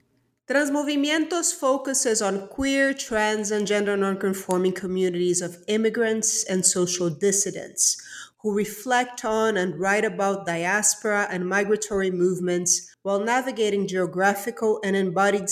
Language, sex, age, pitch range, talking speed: English, female, 40-59, 185-230 Hz, 110 wpm